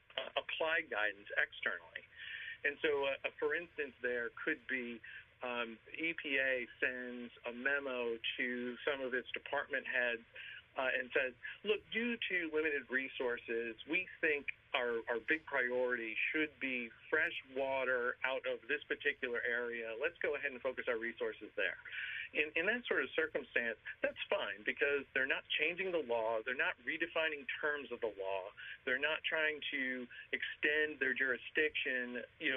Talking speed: 155 wpm